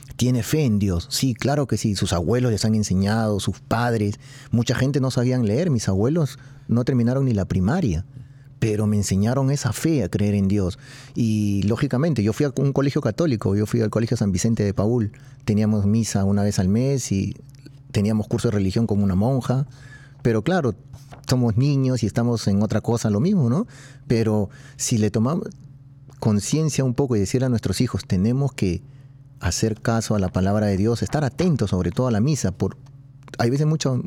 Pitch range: 105-135 Hz